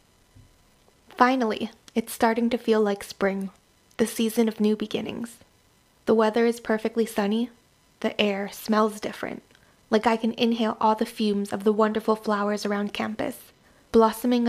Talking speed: 145 wpm